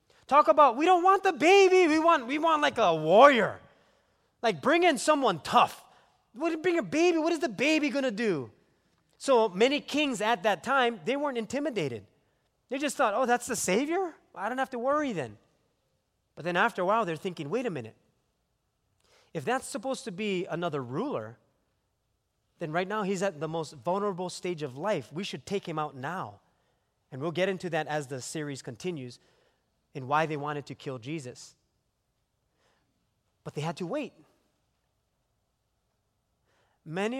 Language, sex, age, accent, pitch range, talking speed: English, male, 30-49, American, 140-230 Hz, 175 wpm